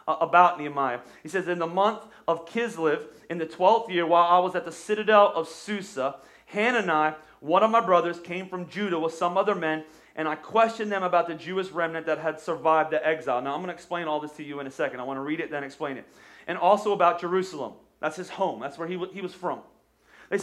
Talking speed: 240 wpm